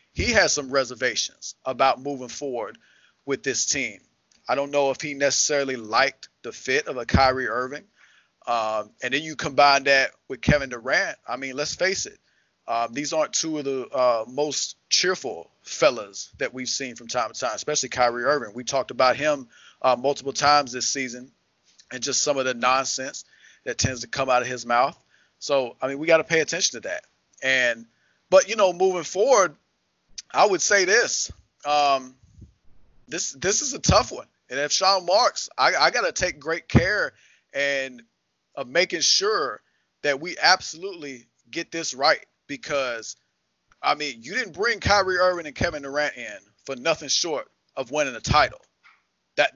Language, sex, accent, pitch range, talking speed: English, male, American, 130-160 Hz, 180 wpm